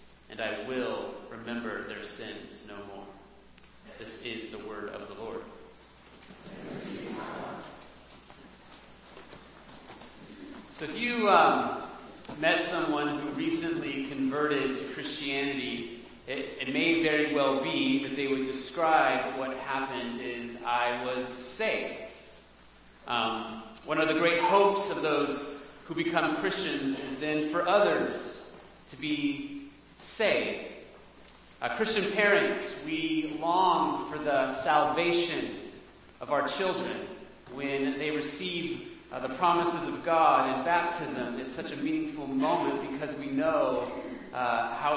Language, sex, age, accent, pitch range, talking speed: English, male, 30-49, American, 130-190 Hz, 120 wpm